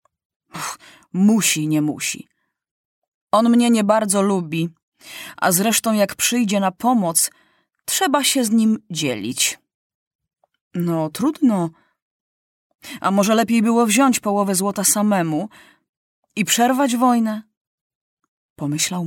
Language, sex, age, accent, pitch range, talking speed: Polish, female, 30-49, native, 170-255 Hz, 105 wpm